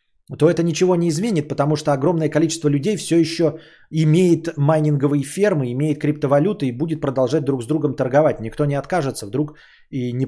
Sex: male